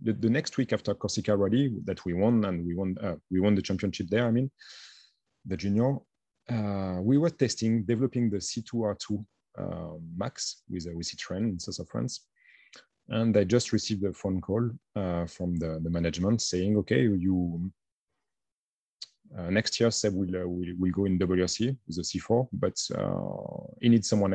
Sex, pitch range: male, 90-110 Hz